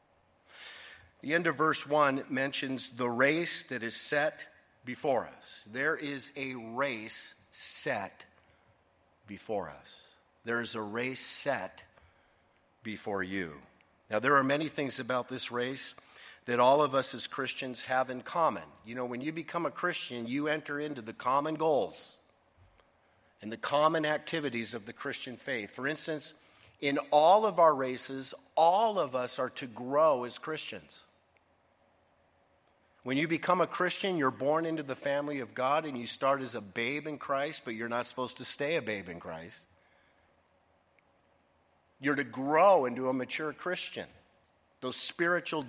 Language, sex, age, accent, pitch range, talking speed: English, male, 50-69, American, 115-150 Hz, 155 wpm